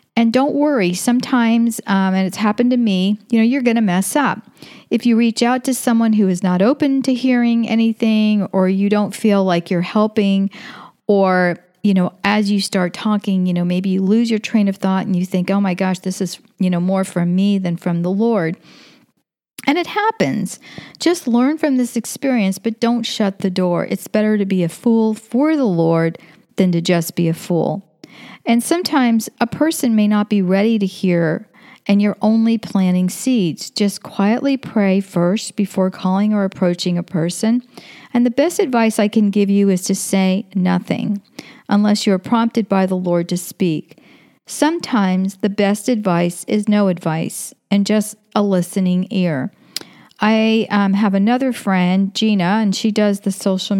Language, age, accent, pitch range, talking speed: English, 40-59, American, 185-230 Hz, 185 wpm